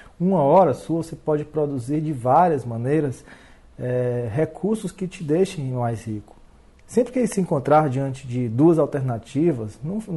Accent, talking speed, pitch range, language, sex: Brazilian, 150 wpm, 130-170 Hz, Portuguese, male